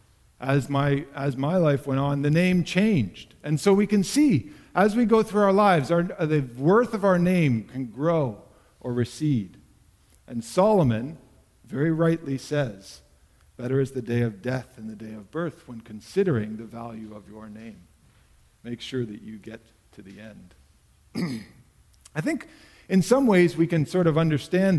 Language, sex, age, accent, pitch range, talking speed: English, male, 50-69, American, 125-170 Hz, 175 wpm